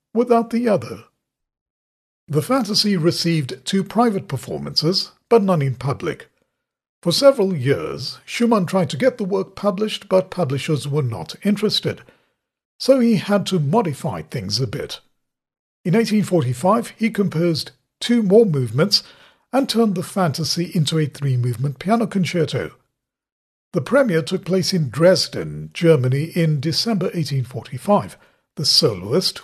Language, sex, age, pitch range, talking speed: English, male, 50-69, 150-210 Hz, 130 wpm